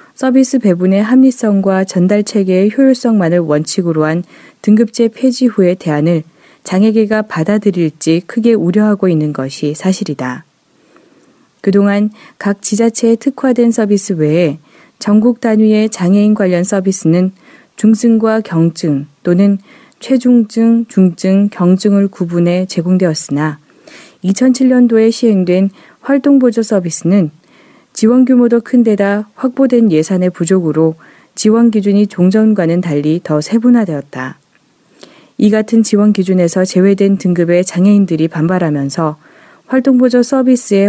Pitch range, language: 170-230 Hz, Korean